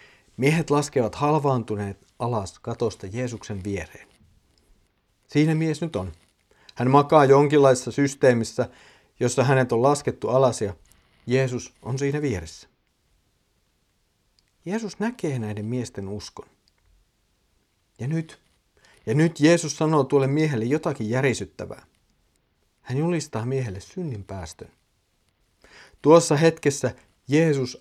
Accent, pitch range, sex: native, 105-150 Hz, male